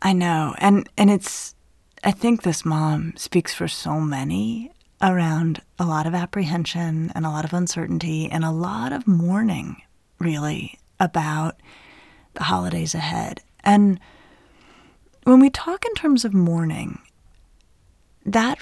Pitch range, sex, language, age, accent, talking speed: 160-205 Hz, female, English, 30-49, American, 135 wpm